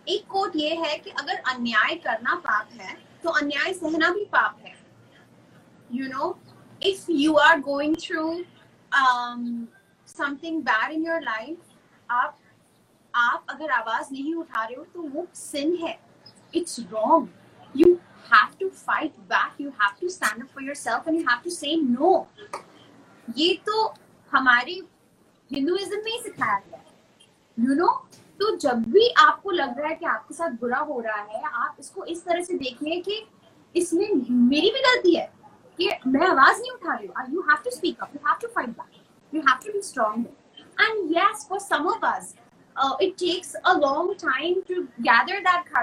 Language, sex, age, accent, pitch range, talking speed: Hindi, female, 20-39, native, 260-355 Hz, 85 wpm